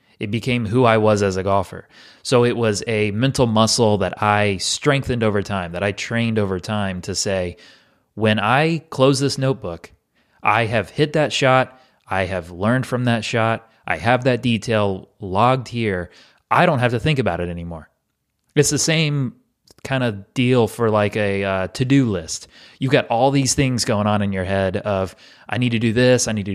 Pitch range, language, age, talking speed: 100-125 Hz, English, 30-49, 195 wpm